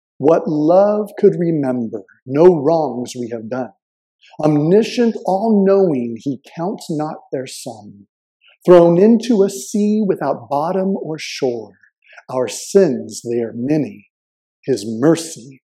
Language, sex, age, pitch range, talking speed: English, male, 50-69, 140-215 Hz, 120 wpm